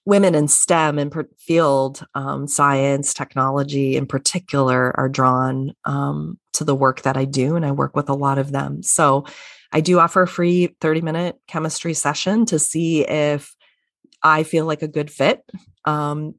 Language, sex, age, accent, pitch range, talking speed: English, female, 30-49, American, 135-170 Hz, 170 wpm